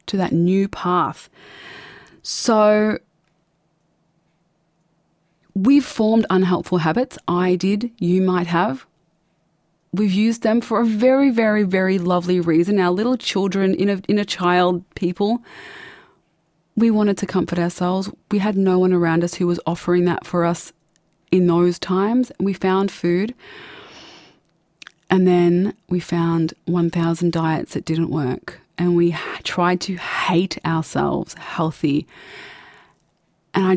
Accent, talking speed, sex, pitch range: Australian, 130 wpm, female, 165-195 Hz